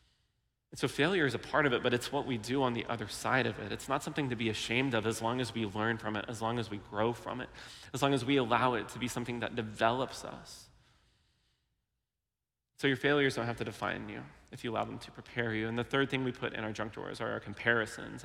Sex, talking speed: male, 260 wpm